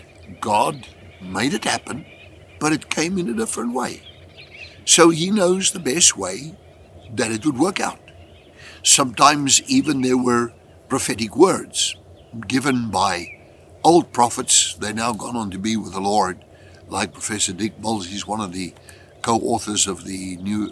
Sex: male